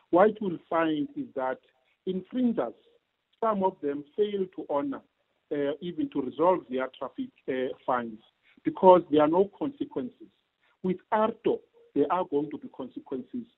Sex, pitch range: male, 140-225 Hz